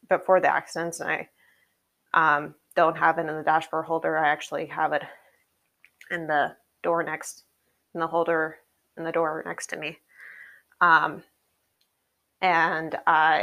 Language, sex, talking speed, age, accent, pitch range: English, female, 145 wpm, 20-39, American, 165-180 Hz